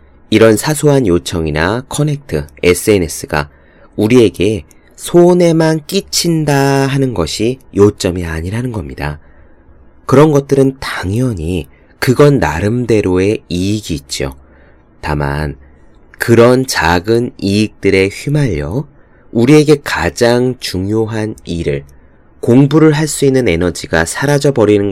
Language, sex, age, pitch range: Korean, male, 30-49, 80-125 Hz